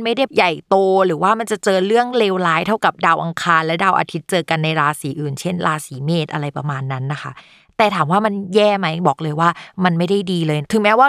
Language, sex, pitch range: Thai, female, 165-215 Hz